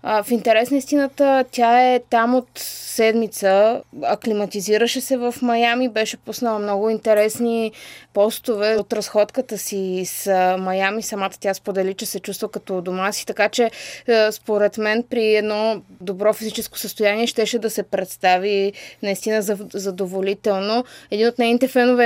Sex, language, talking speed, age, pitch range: female, Bulgarian, 135 wpm, 20-39, 210-245 Hz